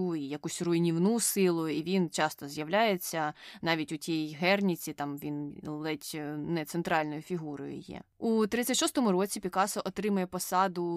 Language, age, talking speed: Ukrainian, 20-39, 135 wpm